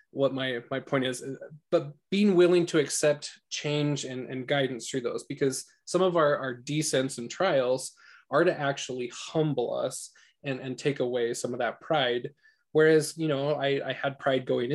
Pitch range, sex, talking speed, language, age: 130-155 Hz, male, 180 wpm, English, 20-39